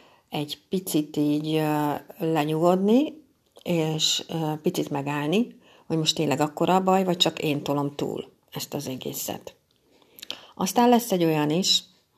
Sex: female